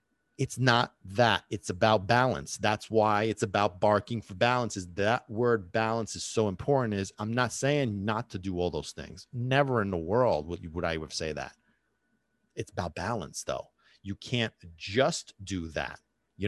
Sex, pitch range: male, 105-145 Hz